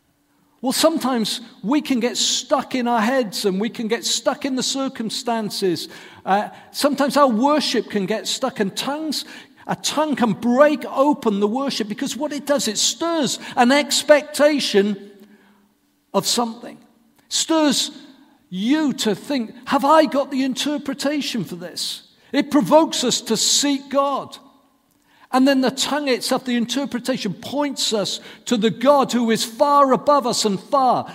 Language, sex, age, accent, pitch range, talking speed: English, male, 50-69, British, 205-275 Hz, 155 wpm